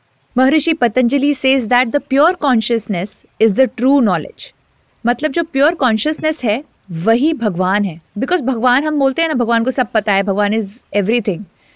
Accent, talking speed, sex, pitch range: native, 170 wpm, female, 205-285 Hz